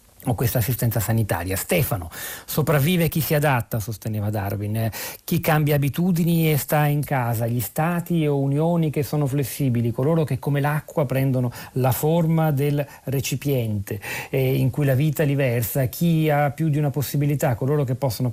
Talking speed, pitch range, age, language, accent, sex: 165 wpm, 125-150 Hz, 40-59, Italian, native, male